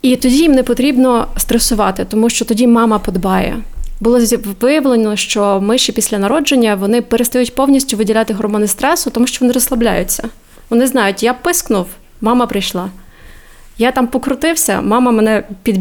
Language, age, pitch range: Ukrainian, 20-39, 205-240 Hz